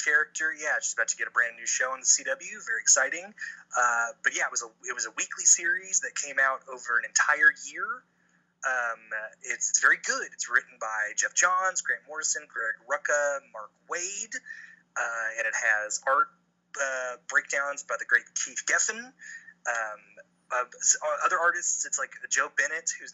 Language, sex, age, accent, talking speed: English, male, 30-49, American, 180 wpm